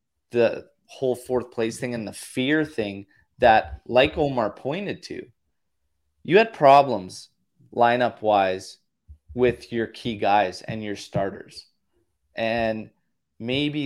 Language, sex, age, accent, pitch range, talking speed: English, male, 20-39, American, 100-120 Hz, 120 wpm